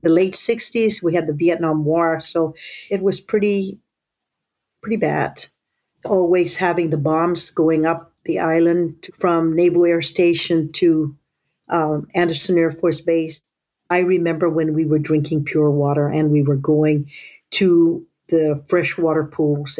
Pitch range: 150-175 Hz